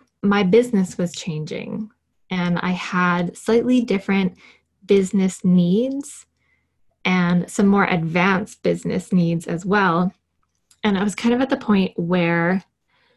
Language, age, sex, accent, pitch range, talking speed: English, 20-39, female, American, 180-215 Hz, 130 wpm